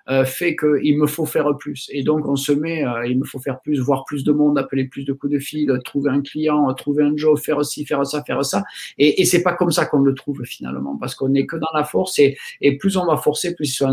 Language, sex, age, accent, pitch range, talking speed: French, male, 50-69, French, 135-170 Hz, 280 wpm